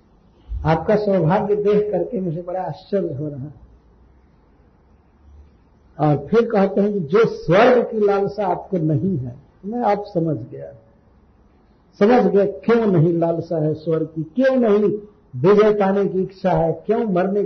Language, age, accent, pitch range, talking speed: Hindi, 50-69, native, 155-215 Hz, 145 wpm